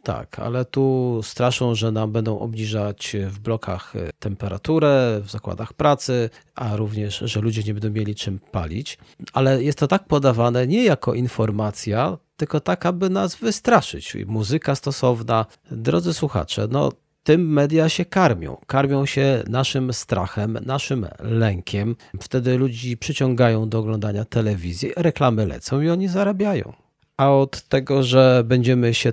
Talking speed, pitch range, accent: 140 wpm, 105-135 Hz, native